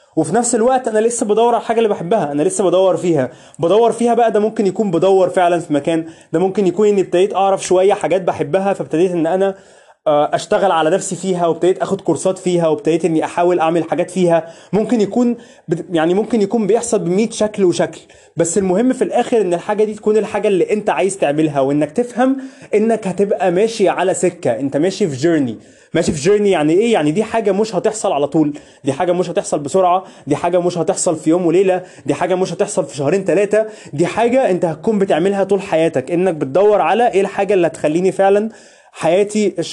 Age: 20-39